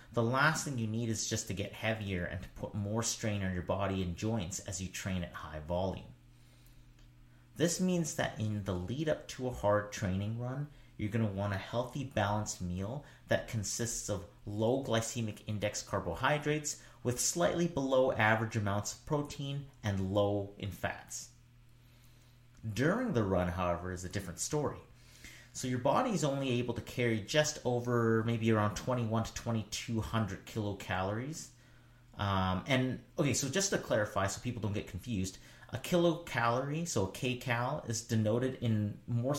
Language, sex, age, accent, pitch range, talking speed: English, male, 30-49, American, 100-125 Hz, 165 wpm